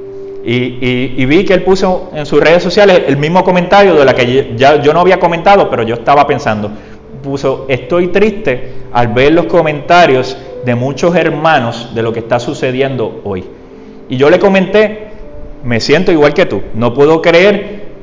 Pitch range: 125-180 Hz